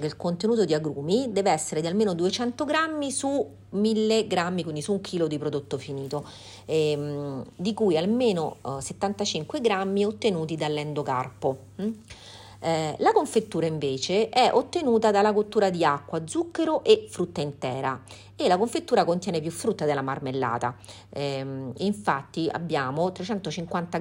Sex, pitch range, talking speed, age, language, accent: female, 145-210 Hz, 140 wpm, 40-59, Italian, native